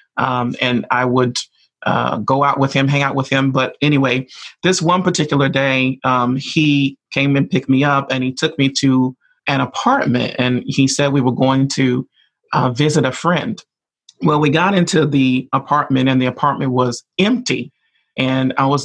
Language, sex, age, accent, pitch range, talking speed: English, male, 30-49, American, 130-150 Hz, 185 wpm